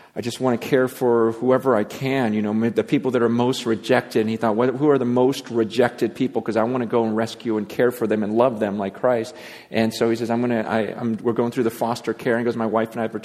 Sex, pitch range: male, 110-130 Hz